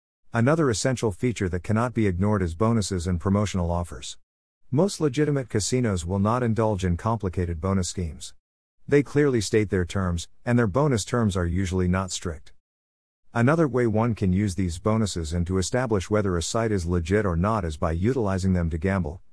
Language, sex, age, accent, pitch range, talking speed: English, male, 50-69, American, 90-120 Hz, 180 wpm